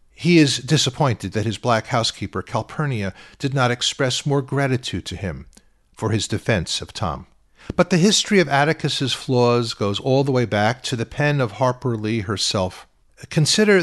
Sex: male